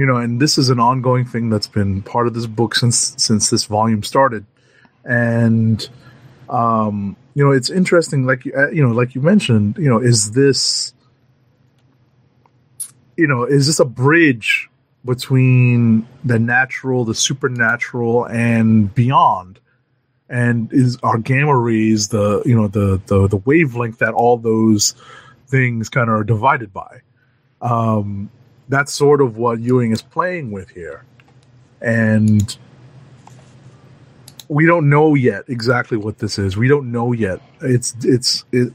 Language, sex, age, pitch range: English, male, 30-49, 115-135 Hz